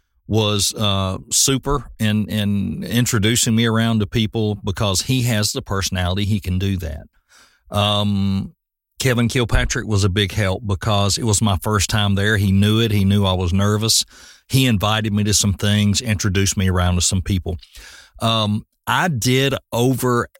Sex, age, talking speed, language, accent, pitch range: male, 40-59, 170 wpm, English, American, 100-125 Hz